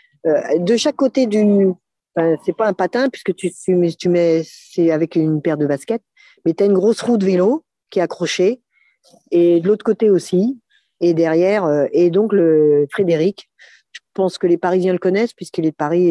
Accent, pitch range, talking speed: French, 150-190 Hz, 205 wpm